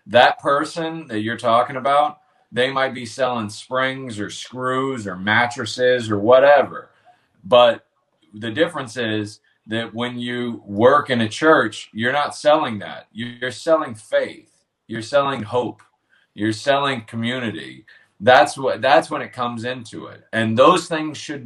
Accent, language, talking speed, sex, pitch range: American, English, 150 wpm, male, 105-130 Hz